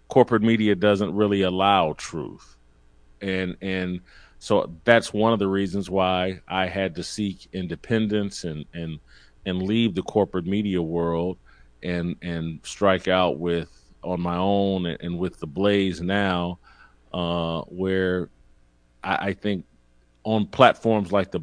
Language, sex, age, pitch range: English, male, 40-59, 85-105 Hz